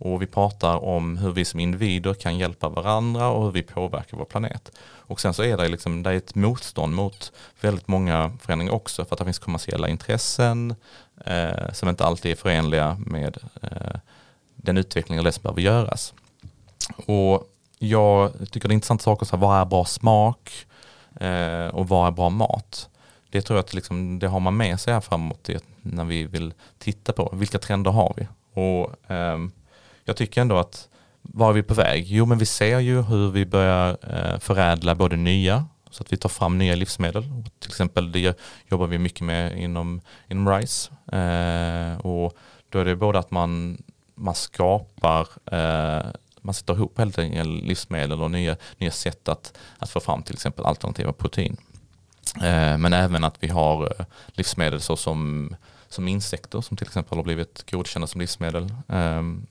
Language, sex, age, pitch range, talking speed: Swedish, male, 30-49, 85-110 Hz, 175 wpm